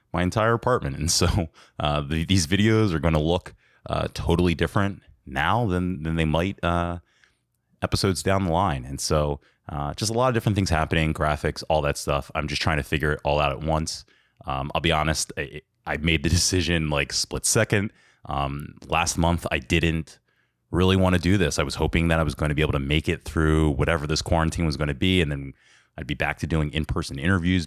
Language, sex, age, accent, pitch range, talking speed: English, male, 20-39, American, 75-90 Hz, 215 wpm